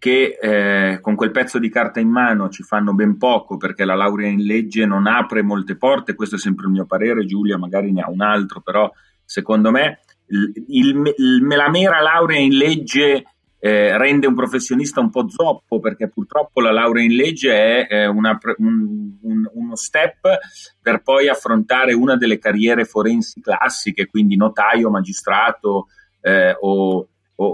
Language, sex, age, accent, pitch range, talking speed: Italian, male, 30-49, native, 105-140 Hz, 170 wpm